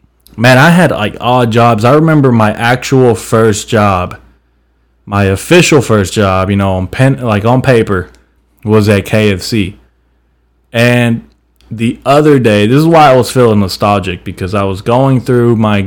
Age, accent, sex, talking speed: 20-39, American, male, 165 wpm